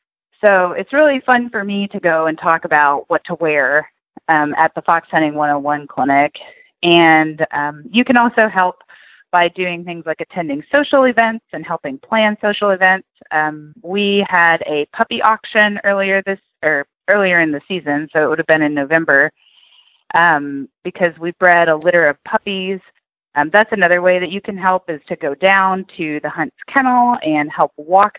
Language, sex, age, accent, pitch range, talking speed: English, female, 30-49, American, 160-210 Hz, 185 wpm